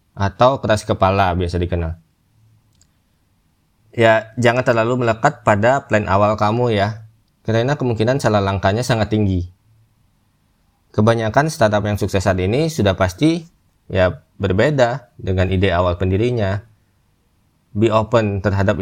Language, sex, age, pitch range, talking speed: Indonesian, male, 20-39, 95-115 Hz, 120 wpm